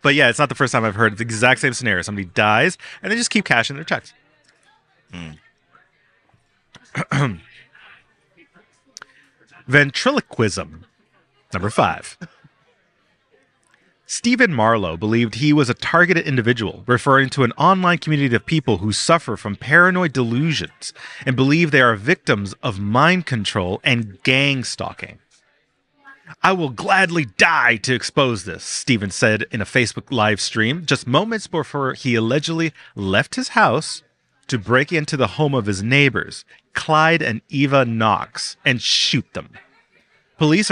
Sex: male